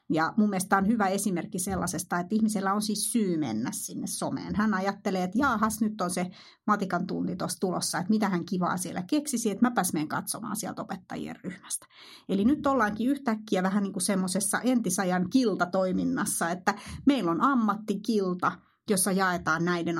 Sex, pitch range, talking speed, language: female, 185-215 Hz, 160 wpm, Finnish